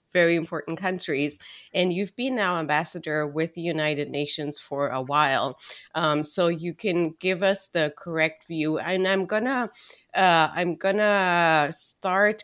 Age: 30-49